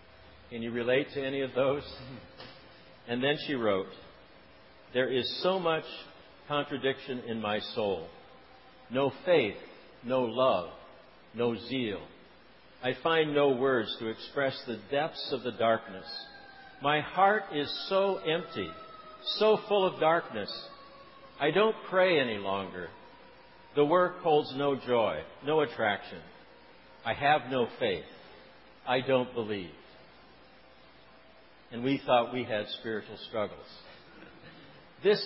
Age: 60-79